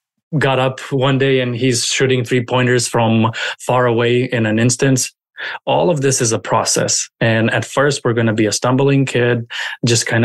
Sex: male